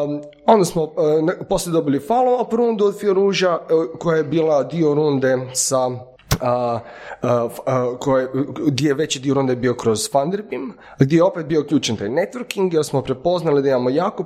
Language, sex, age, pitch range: Croatian, male, 30-49, 125-170 Hz